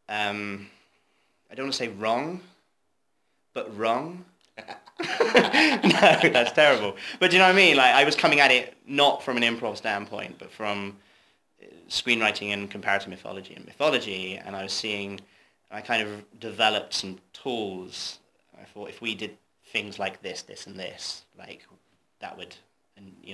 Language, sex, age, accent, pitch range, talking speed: English, male, 20-39, British, 100-135 Hz, 160 wpm